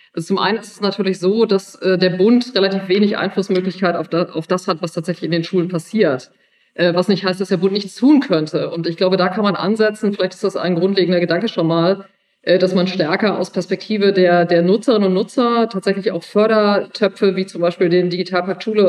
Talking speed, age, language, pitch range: 220 wpm, 40-59, German, 185-210 Hz